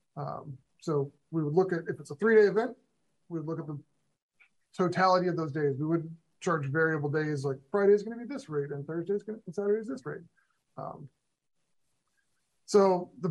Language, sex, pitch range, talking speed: English, male, 160-205 Hz, 205 wpm